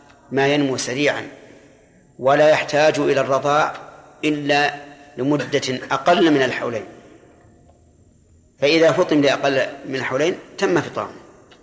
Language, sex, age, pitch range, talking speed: Arabic, male, 40-59, 130-145 Hz, 100 wpm